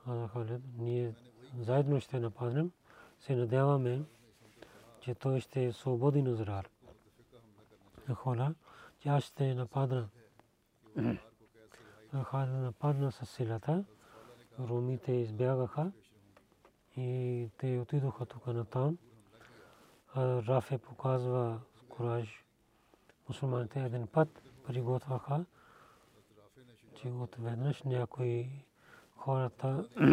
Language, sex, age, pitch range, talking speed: Bulgarian, male, 40-59, 115-135 Hz, 80 wpm